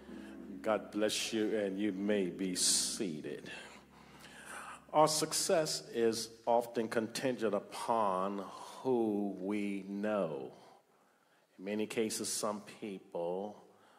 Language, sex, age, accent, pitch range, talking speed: English, male, 50-69, American, 95-115 Hz, 95 wpm